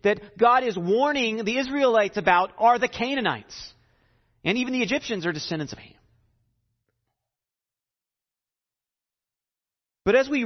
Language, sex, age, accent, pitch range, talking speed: English, male, 40-59, American, 165-245 Hz, 120 wpm